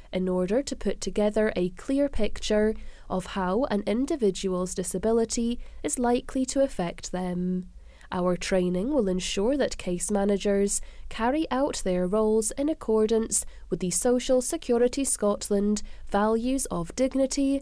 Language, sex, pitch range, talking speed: English, female, 180-240 Hz, 135 wpm